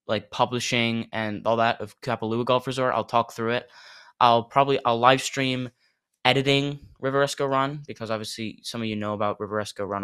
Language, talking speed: English, 180 wpm